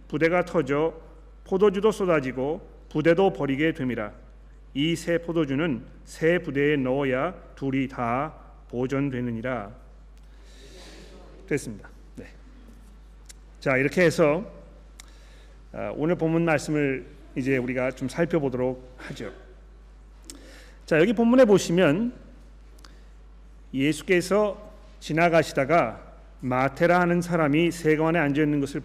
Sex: male